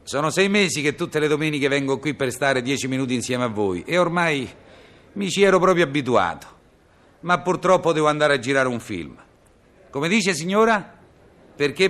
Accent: native